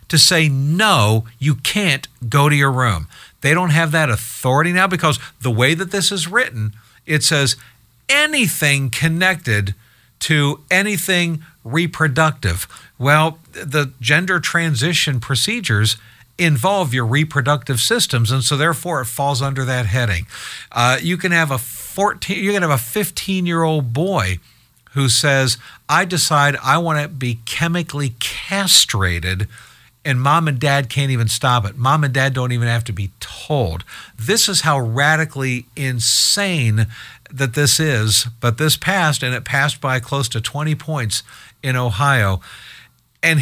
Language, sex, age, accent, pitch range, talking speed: English, male, 50-69, American, 115-160 Hz, 150 wpm